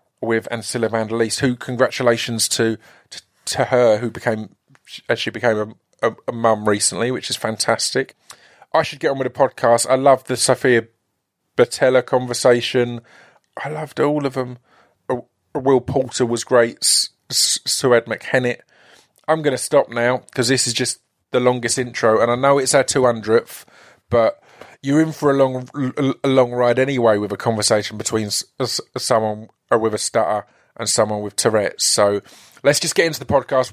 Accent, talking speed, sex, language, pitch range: British, 175 wpm, male, English, 115-140 Hz